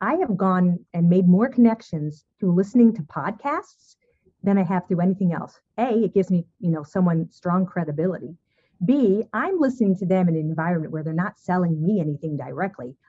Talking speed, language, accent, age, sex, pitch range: 190 wpm, English, American, 50-69, female, 170-230 Hz